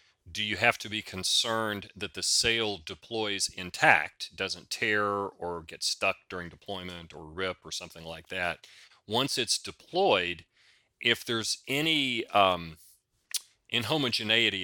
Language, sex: English, male